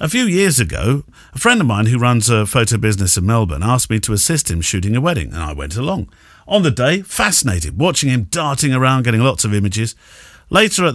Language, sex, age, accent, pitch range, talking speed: English, male, 50-69, British, 115-160 Hz, 225 wpm